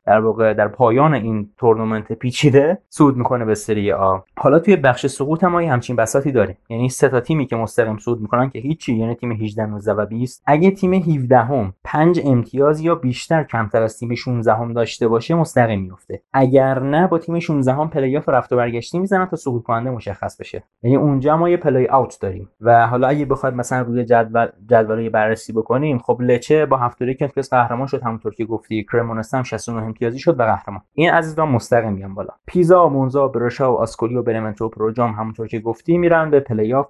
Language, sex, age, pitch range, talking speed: Persian, male, 20-39, 115-135 Hz, 175 wpm